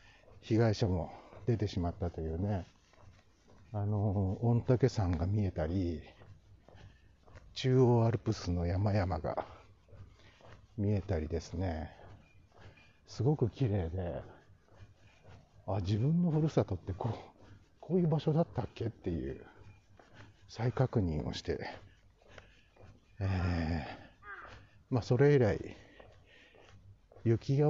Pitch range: 95-125 Hz